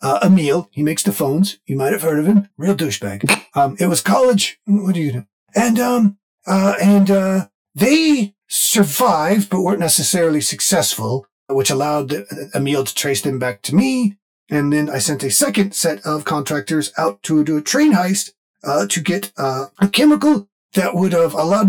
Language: English